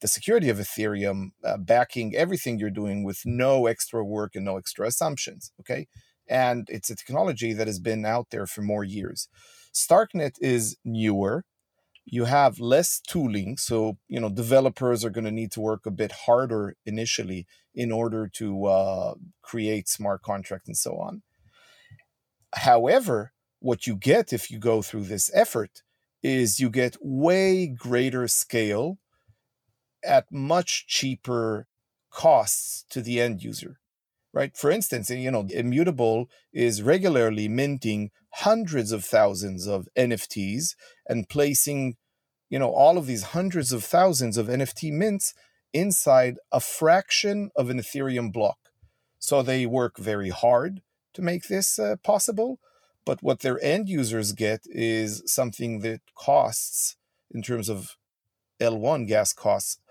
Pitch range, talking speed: 110-135 Hz, 145 wpm